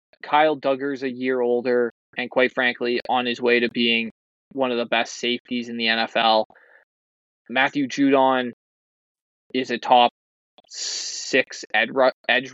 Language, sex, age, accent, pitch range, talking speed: English, male, 20-39, American, 115-130 Hz, 145 wpm